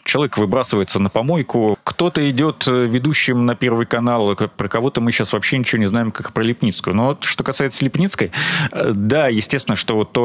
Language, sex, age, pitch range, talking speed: Russian, male, 30-49, 105-130 Hz, 170 wpm